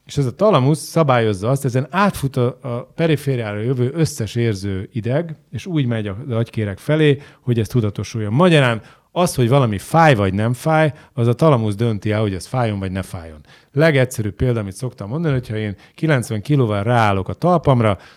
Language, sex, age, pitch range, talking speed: Hungarian, male, 30-49, 105-145 Hz, 185 wpm